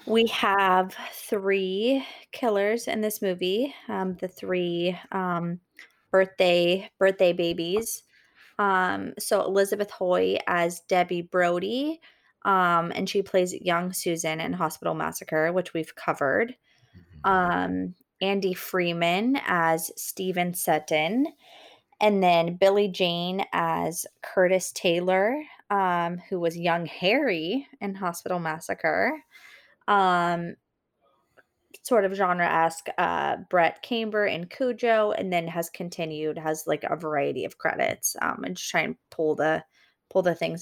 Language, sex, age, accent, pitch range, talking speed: English, female, 20-39, American, 165-205 Hz, 125 wpm